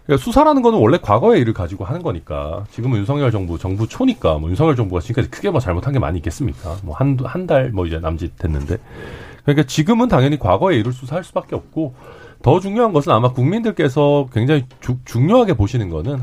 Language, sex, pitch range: Korean, male, 100-145 Hz